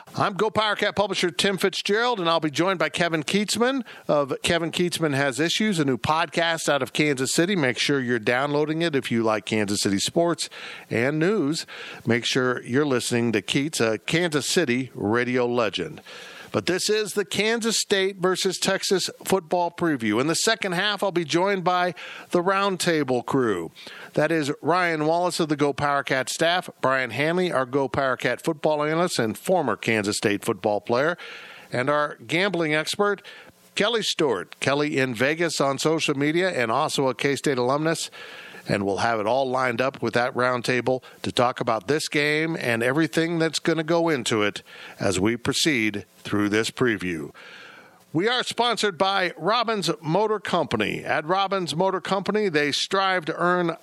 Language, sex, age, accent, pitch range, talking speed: English, male, 50-69, American, 125-180 Hz, 170 wpm